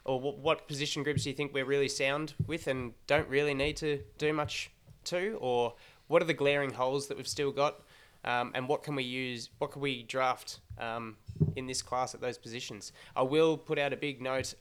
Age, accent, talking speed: 20-39, Australian, 220 wpm